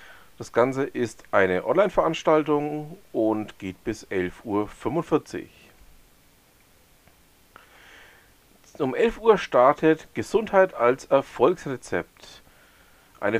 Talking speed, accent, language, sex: 80 wpm, German, German, male